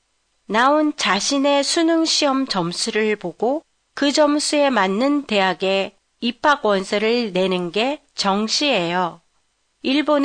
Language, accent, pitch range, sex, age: Japanese, Korean, 200-280 Hz, female, 40-59